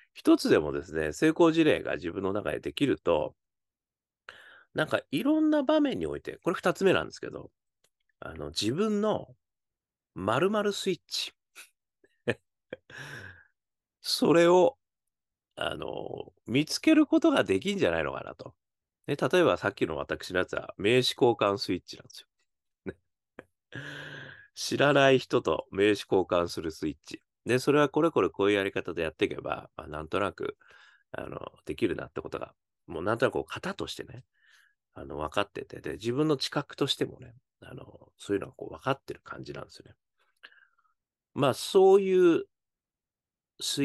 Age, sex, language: 40-59, male, Japanese